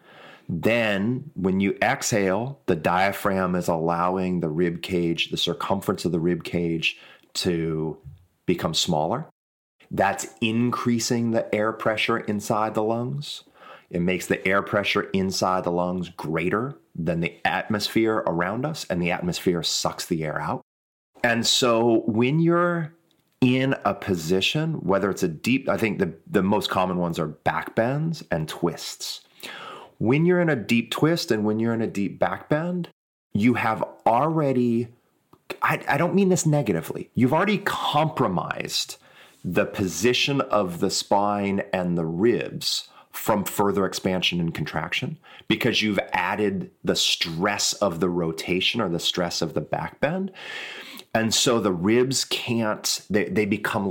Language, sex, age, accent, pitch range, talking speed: English, male, 30-49, American, 90-125 Hz, 145 wpm